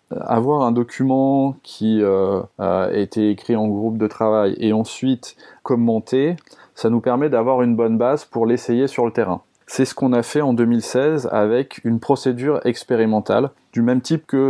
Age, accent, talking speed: 20-39, French, 175 wpm